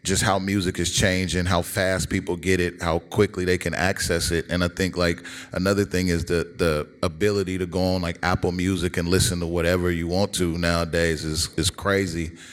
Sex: male